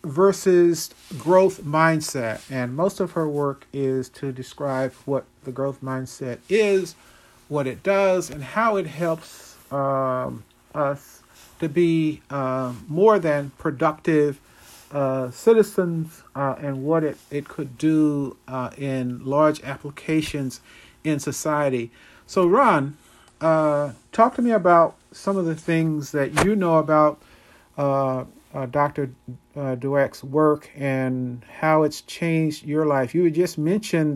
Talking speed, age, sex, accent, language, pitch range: 130 wpm, 50-69, male, American, English, 130-160 Hz